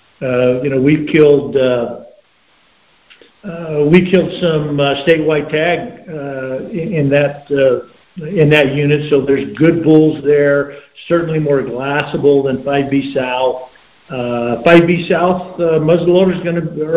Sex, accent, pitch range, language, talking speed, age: male, American, 140-165 Hz, English, 140 wpm, 50-69